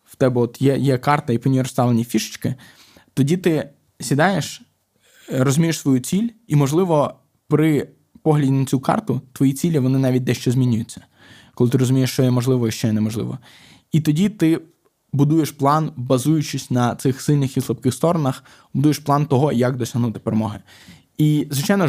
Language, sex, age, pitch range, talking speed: Ukrainian, male, 20-39, 120-145 Hz, 160 wpm